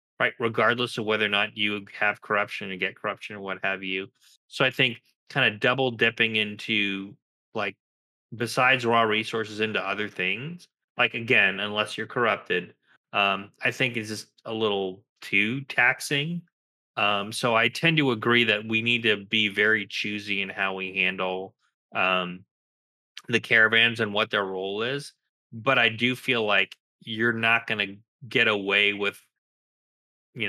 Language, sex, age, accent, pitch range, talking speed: English, male, 20-39, American, 100-115 Hz, 160 wpm